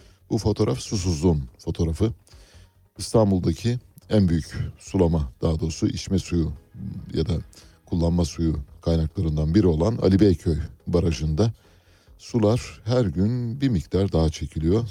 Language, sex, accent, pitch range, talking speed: Turkish, male, native, 85-105 Hz, 115 wpm